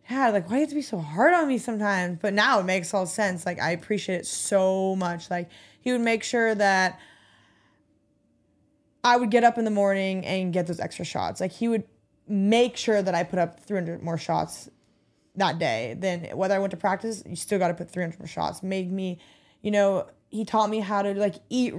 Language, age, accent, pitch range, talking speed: English, 20-39, American, 180-215 Hz, 225 wpm